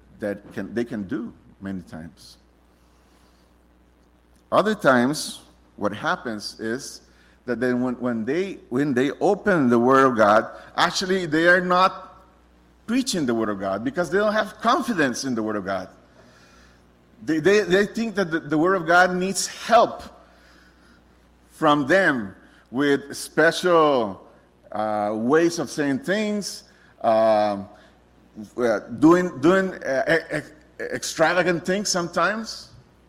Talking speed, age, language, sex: 130 wpm, 50-69, English, male